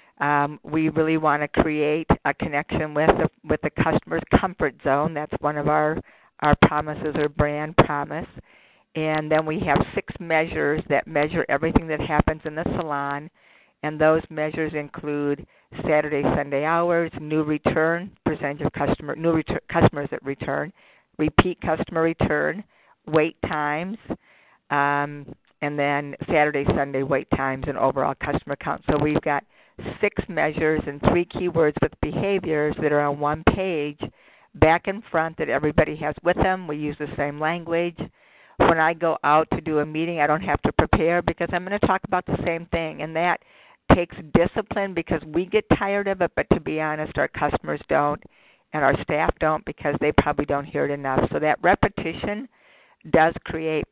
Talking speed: 170 wpm